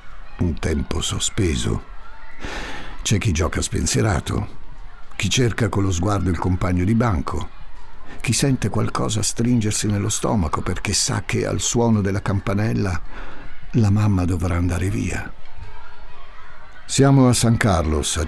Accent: native